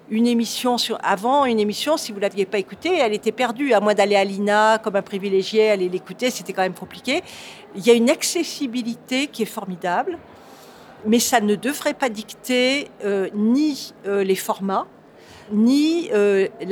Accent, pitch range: French, 200-250 Hz